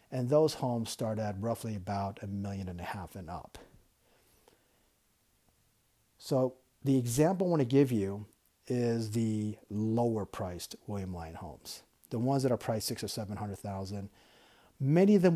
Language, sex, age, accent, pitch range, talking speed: English, male, 50-69, American, 105-130 Hz, 155 wpm